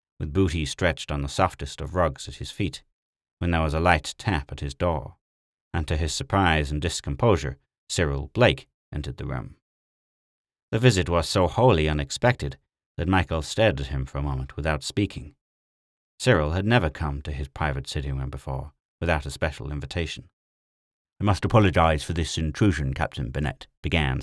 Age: 30-49